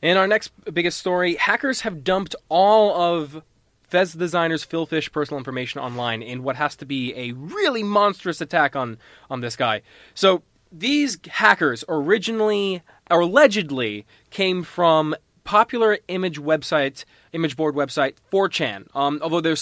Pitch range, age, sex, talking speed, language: 135-185 Hz, 20-39, male, 145 wpm, English